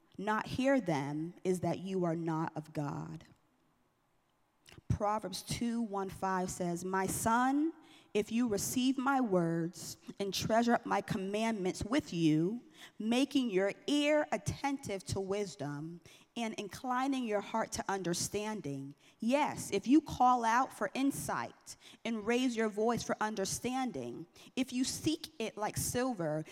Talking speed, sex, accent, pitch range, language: 135 wpm, female, American, 180-245 Hz, English